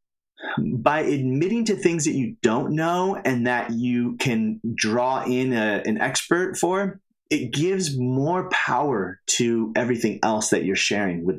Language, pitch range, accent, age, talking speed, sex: English, 115-145 Hz, American, 30-49, 150 wpm, male